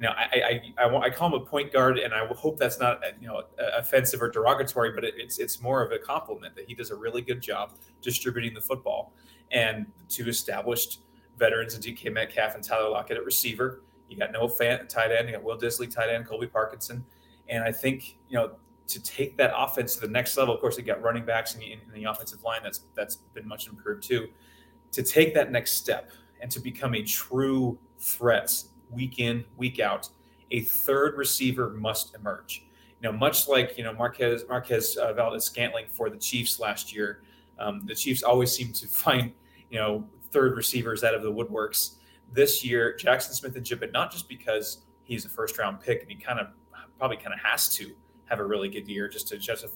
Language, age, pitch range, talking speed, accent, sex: English, 30-49, 110-130 Hz, 215 wpm, American, male